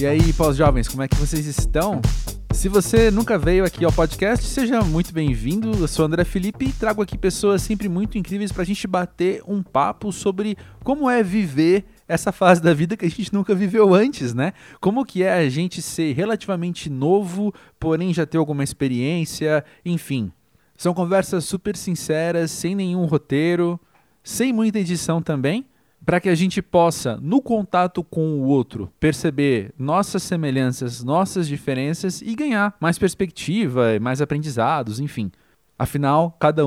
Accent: Brazilian